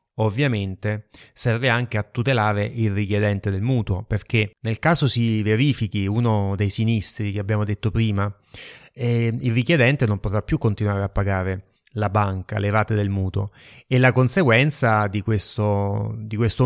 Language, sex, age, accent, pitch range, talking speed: Italian, male, 30-49, native, 105-120 Hz, 155 wpm